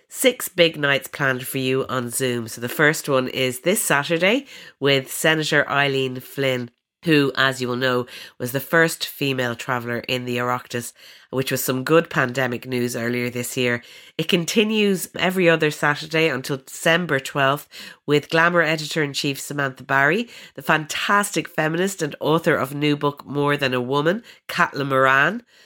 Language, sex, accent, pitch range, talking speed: English, female, Irish, 130-155 Hz, 160 wpm